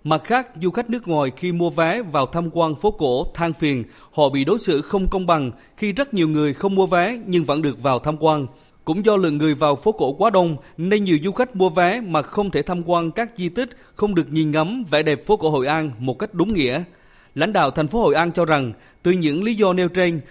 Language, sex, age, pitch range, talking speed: Vietnamese, male, 20-39, 150-190 Hz, 255 wpm